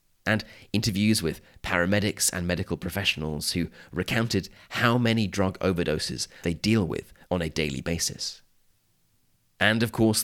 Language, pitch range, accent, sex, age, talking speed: English, 85-115 Hz, British, male, 30-49, 135 wpm